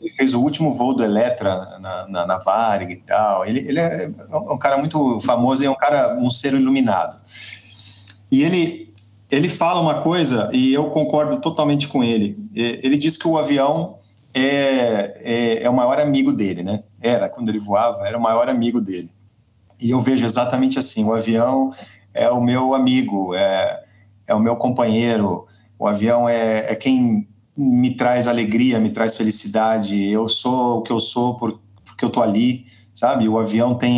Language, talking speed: Portuguese, 180 wpm